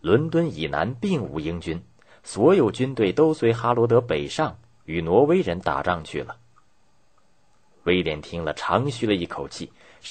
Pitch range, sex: 95-135 Hz, male